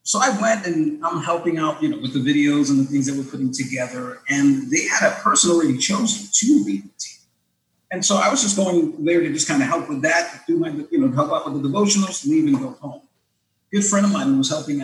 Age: 40-59